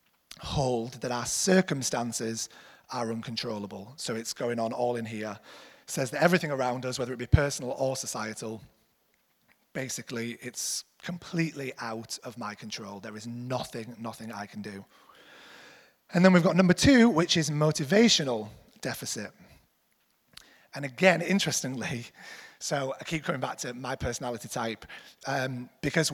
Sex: male